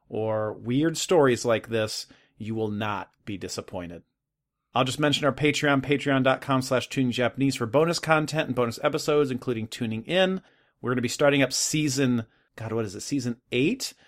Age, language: 30-49, English